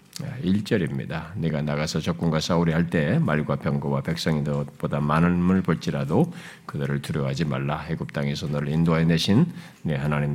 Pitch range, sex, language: 90-140 Hz, male, Korean